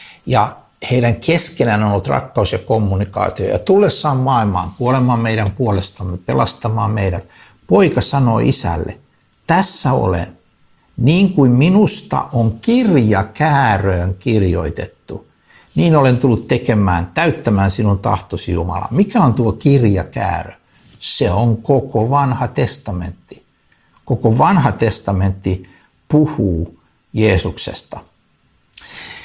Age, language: 60-79, Finnish